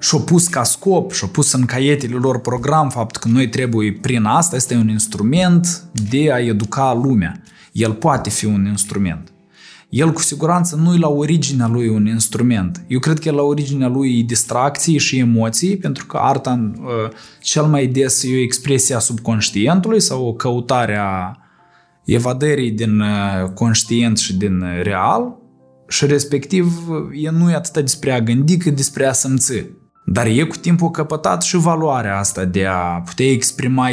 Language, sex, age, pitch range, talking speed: Romanian, male, 20-39, 115-155 Hz, 165 wpm